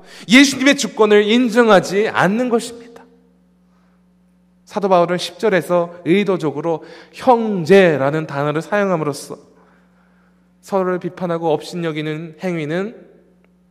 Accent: native